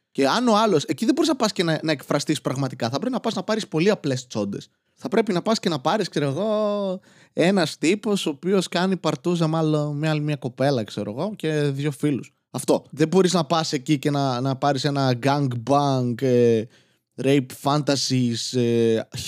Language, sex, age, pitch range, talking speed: Greek, male, 20-39, 130-170 Hz, 195 wpm